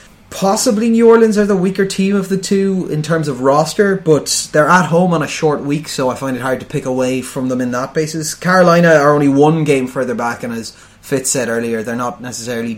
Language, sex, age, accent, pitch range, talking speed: English, male, 20-39, Irish, 125-155 Hz, 235 wpm